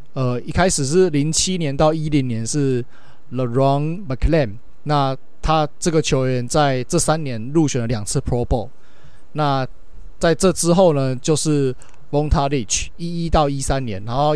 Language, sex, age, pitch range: Chinese, male, 20-39, 130-165 Hz